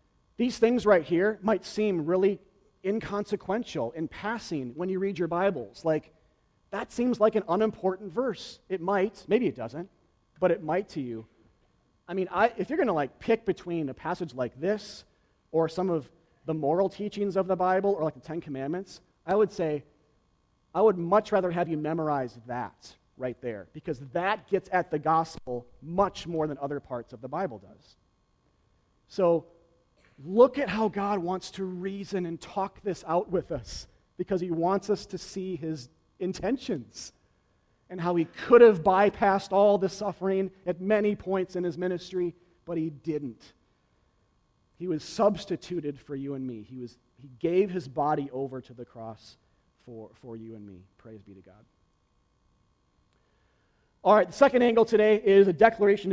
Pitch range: 145-200 Hz